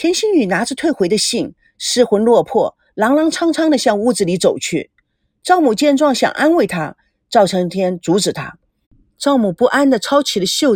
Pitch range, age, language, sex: 205-305 Hz, 40-59, Chinese, female